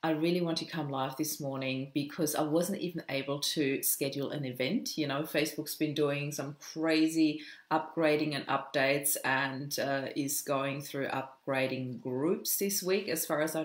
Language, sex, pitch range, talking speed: English, female, 140-160 Hz, 175 wpm